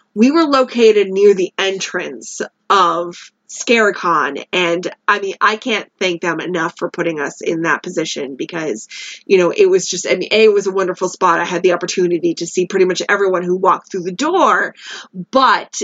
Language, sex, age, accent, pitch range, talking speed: English, female, 20-39, American, 180-255 Hz, 185 wpm